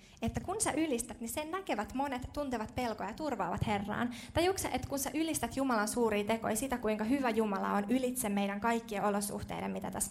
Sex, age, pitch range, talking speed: female, 20-39, 205-260 Hz, 190 wpm